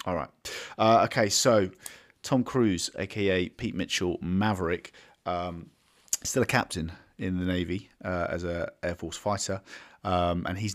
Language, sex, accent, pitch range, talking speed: English, male, British, 90-105 Hz, 150 wpm